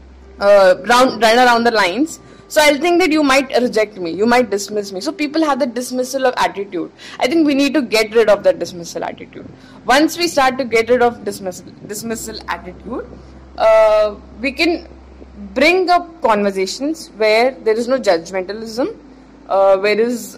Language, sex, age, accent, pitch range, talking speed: English, female, 20-39, Indian, 205-275 Hz, 175 wpm